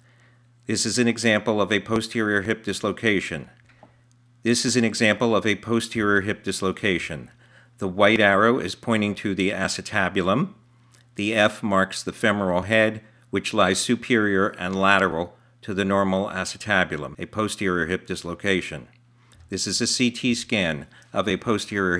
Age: 50-69